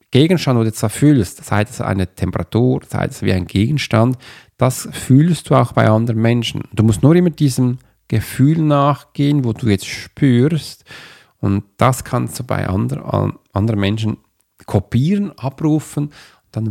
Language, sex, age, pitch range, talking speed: German, male, 40-59, 105-140 Hz, 160 wpm